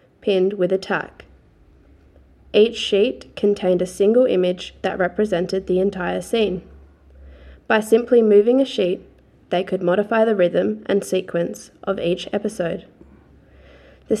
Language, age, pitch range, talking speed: English, 20-39, 180-220 Hz, 130 wpm